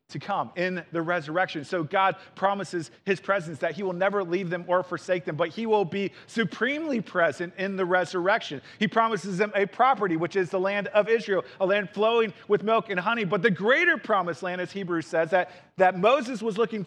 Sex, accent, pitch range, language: male, American, 180-225 Hz, English